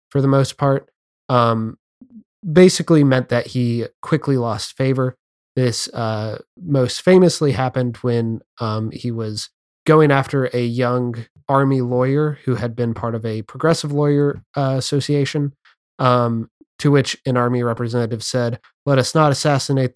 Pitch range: 120-145 Hz